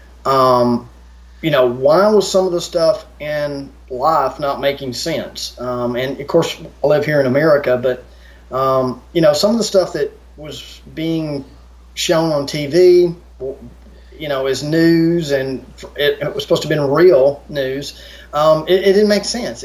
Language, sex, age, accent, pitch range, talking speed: English, male, 30-49, American, 130-175 Hz, 170 wpm